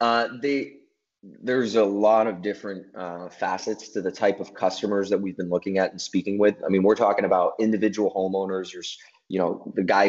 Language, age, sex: English, 20-39, male